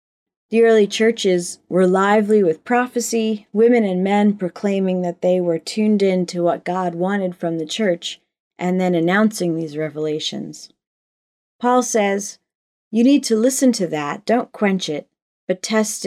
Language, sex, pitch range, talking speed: English, female, 170-215 Hz, 155 wpm